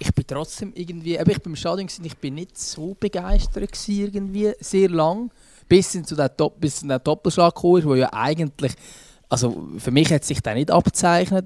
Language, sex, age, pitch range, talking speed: German, male, 20-39, 145-175 Hz, 170 wpm